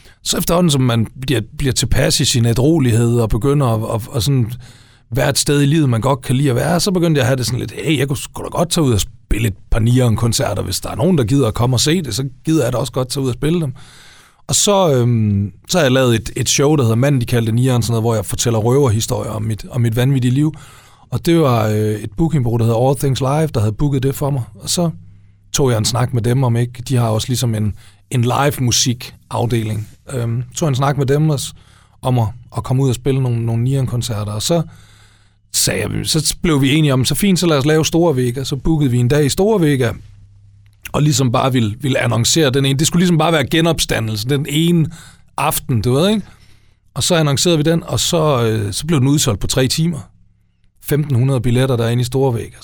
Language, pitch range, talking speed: Danish, 115-145 Hz, 240 wpm